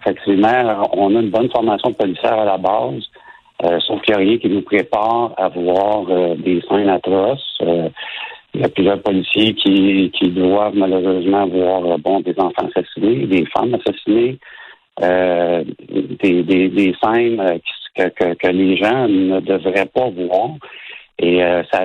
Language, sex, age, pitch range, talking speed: French, male, 60-79, 95-110 Hz, 165 wpm